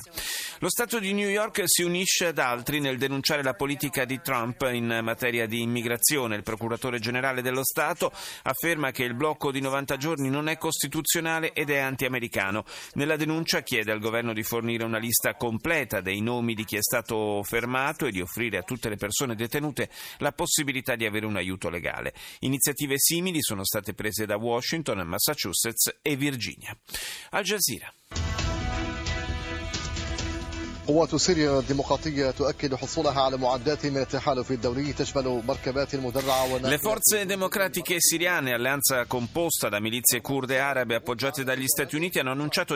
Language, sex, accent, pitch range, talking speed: Italian, male, native, 115-145 Hz, 140 wpm